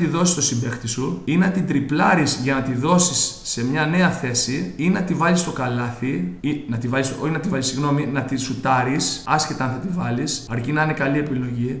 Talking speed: 220 wpm